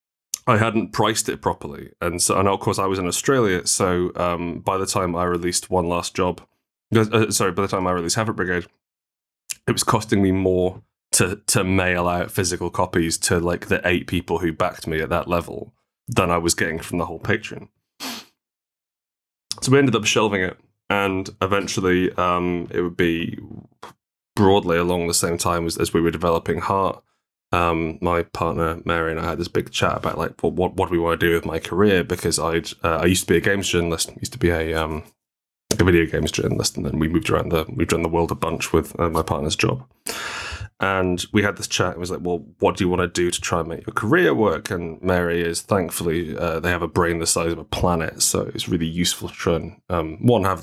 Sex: male